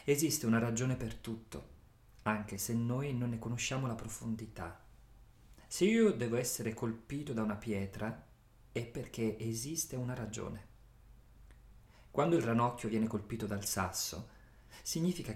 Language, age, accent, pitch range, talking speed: Italian, 40-59, native, 105-125 Hz, 135 wpm